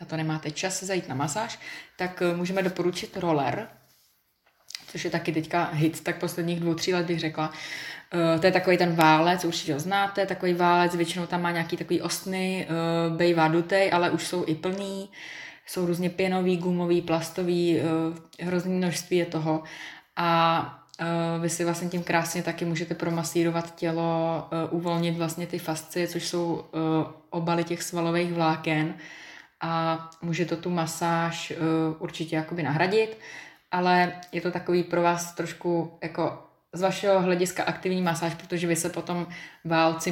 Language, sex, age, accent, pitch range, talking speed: Czech, female, 20-39, native, 160-175 Hz, 160 wpm